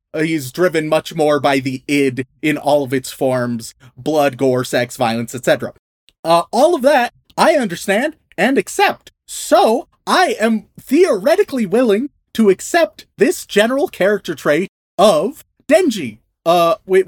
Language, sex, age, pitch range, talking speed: English, male, 30-49, 145-200 Hz, 135 wpm